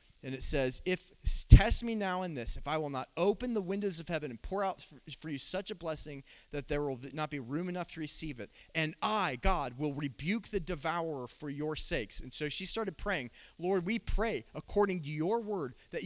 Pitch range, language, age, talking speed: 165-220 Hz, English, 30-49, 220 wpm